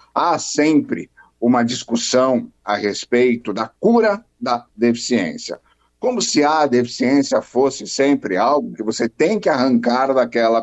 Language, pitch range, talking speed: Portuguese, 115-170 Hz, 130 wpm